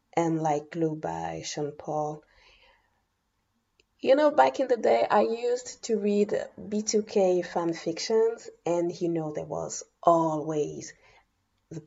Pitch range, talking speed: 150-185 Hz, 130 wpm